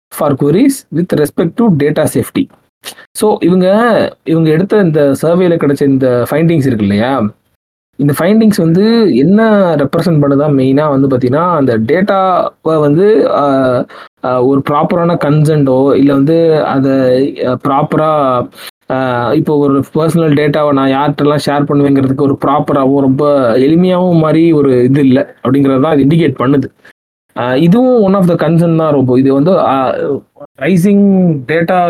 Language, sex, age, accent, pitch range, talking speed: Tamil, male, 20-39, native, 135-165 Hz, 120 wpm